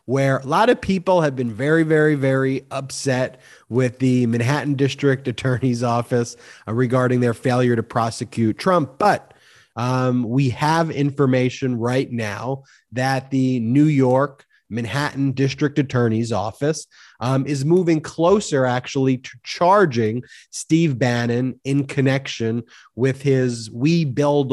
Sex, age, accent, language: male, 30-49, American, English